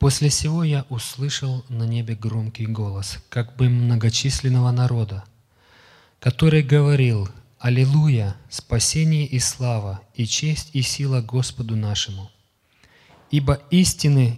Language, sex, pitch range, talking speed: Russian, male, 115-135 Hz, 110 wpm